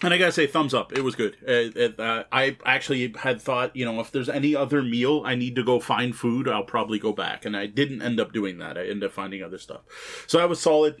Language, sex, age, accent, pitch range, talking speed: English, male, 30-49, American, 115-150 Hz, 280 wpm